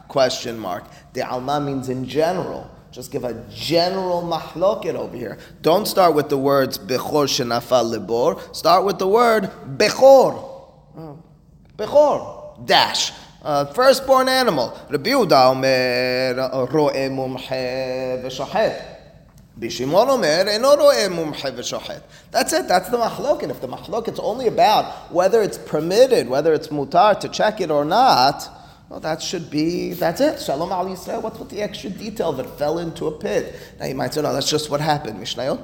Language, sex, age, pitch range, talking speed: English, male, 30-49, 135-190 Hz, 140 wpm